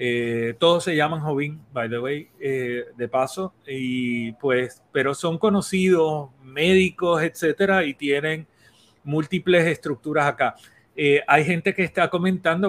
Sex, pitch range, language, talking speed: male, 145-195 Hz, Spanish, 135 wpm